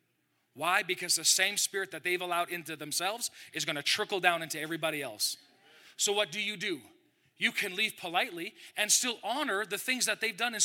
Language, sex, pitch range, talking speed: English, male, 175-245 Hz, 205 wpm